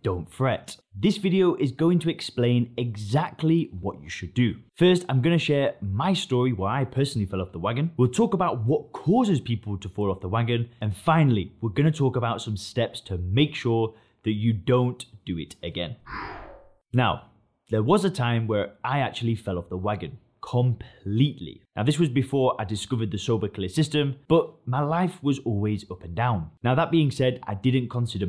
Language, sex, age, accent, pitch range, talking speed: English, male, 20-39, British, 105-145 Hz, 200 wpm